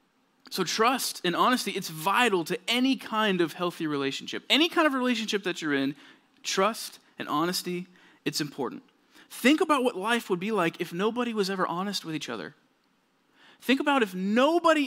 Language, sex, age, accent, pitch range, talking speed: English, male, 30-49, American, 180-255 Hz, 175 wpm